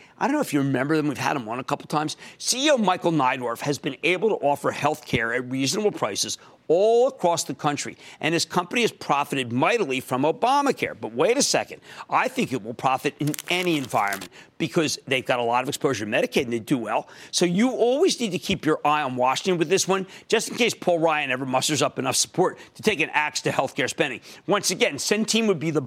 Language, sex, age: English, male, 50-69